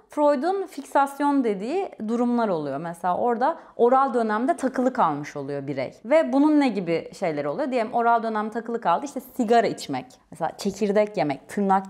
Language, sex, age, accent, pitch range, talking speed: Turkish, female, 30-49, native, 180-260 Hz, 155 wpm